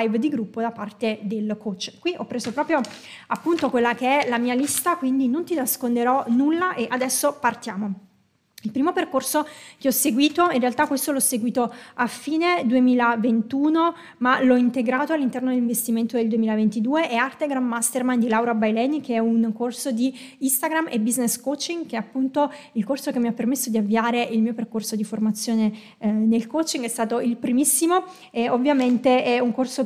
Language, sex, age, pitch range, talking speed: Italian, female, 20-39, 230-285 Hz, 175 wpm